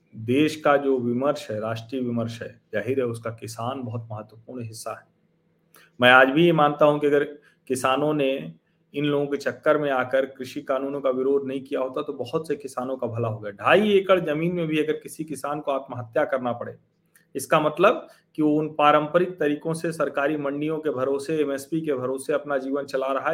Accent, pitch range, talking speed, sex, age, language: native, 130-165 Hz, 200 wpm, male, 40-59, Hindi